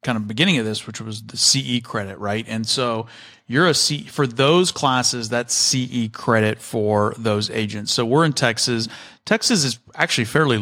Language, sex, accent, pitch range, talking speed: English, male, American, 110-135 Hz, 185 wpm